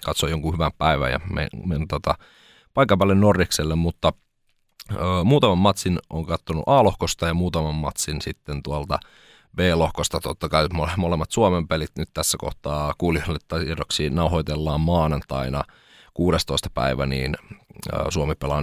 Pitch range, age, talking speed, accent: 75-95 Hz, 30-49, 140 wpm, native